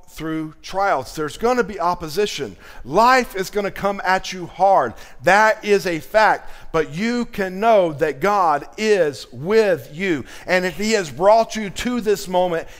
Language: English